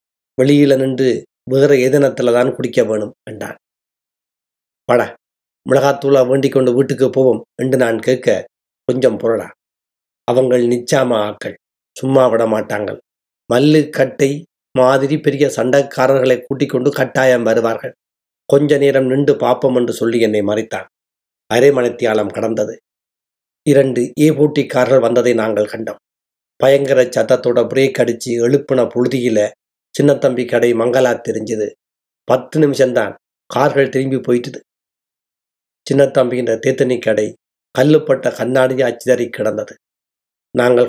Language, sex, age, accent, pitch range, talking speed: Tamil, male, 30-49, native, 115-135 Hz, 105 wpm